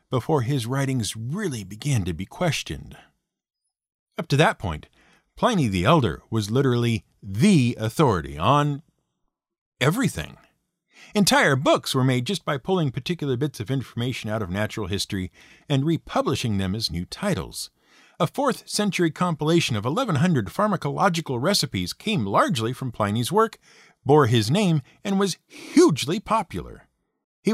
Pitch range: 115-180 Hz